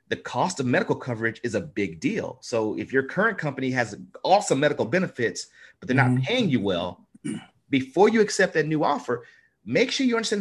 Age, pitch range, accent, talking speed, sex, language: 30-49, 120-165 Hz, American, 195 wpm, male, English